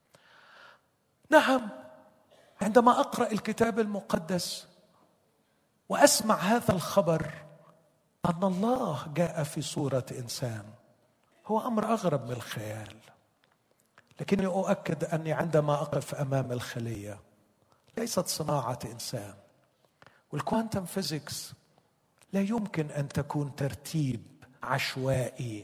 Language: Arabic